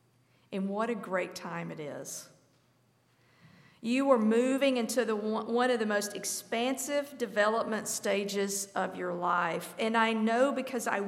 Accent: American